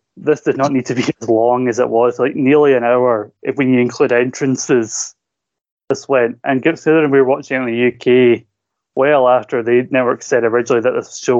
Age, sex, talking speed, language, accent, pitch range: 20-39, male, 210 wpm, English, British, 115-130 Hz